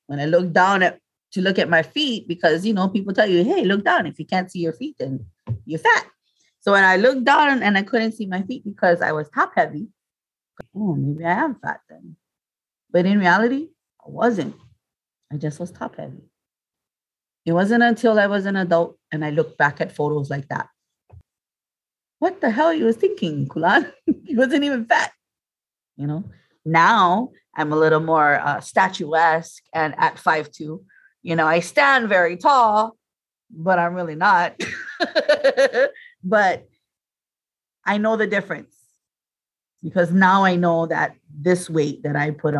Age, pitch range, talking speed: 30-49, 160-225 Hz, 175 wpm